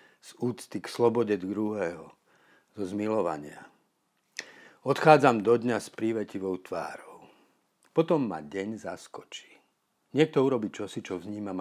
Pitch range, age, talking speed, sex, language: 95-125 Hz, 50-69, 115 wpm, male, Slovak